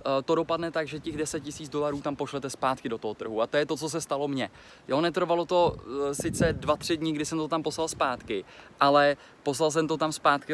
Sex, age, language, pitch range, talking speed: male, 20-39, Czech, 130-150 Hz, 220 wpm